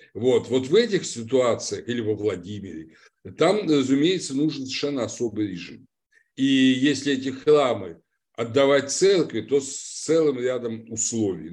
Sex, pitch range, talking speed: male, 105-145 Hz, 130 wpm